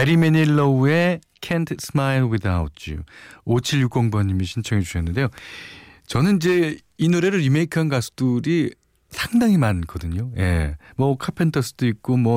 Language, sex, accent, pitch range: Korean, male, native, 95-140 Hz